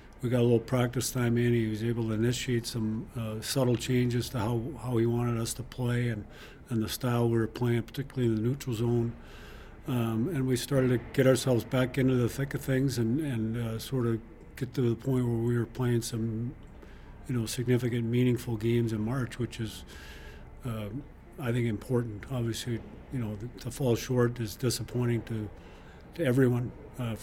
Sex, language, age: male, English, 50-69